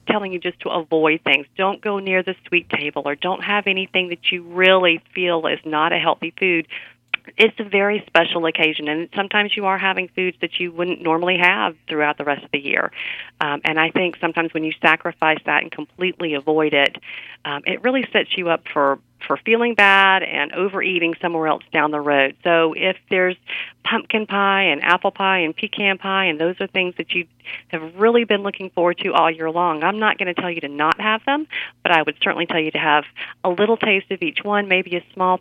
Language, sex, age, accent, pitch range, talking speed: English, female, 40-59, American, 155-190 Hz, 220 wpm